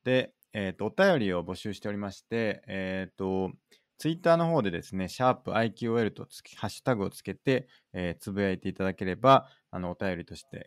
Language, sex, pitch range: Japanese, male, 85-115 Hz